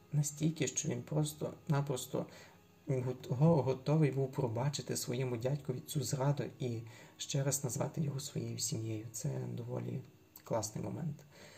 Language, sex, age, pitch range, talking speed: Ukrainian, male, 30-49, 120-150 Hz, 115 wpm